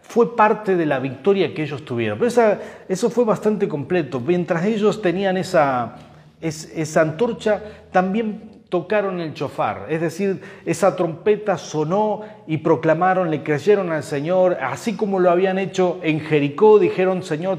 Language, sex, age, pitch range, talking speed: Spanish, male, 40-59, 155-200 Hz, 145 wpm